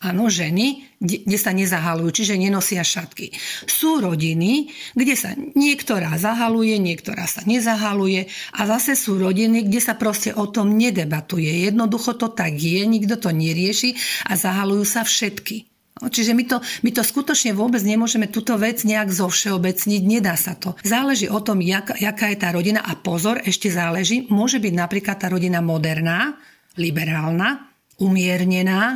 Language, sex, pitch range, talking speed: Slovak, female, 180-235 Hz, 155 wpm